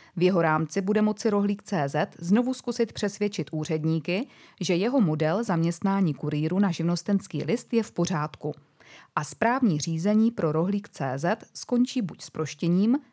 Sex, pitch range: female, 155-205 Hz